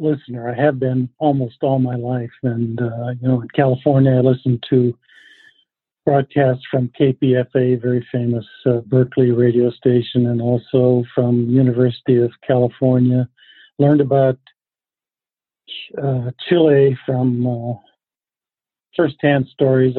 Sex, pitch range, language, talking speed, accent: male, 125-140 Hz, English, 120 wpm, American